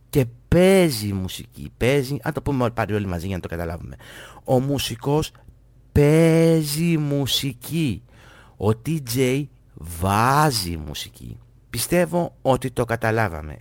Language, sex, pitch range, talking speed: Greek, male, 110-140 Hz, 110 wpm